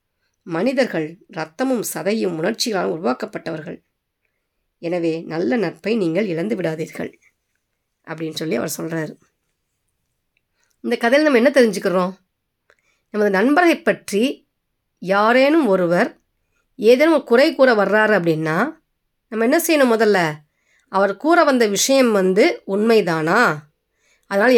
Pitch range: 170-250 Hz